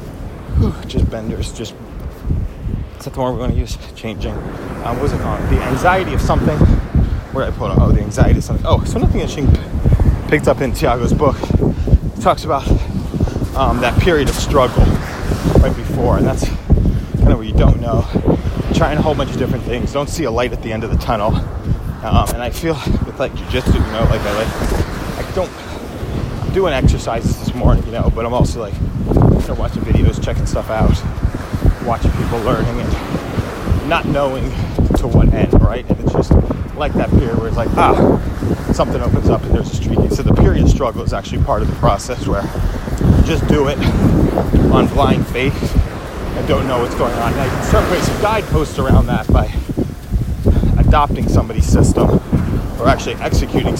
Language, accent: English, American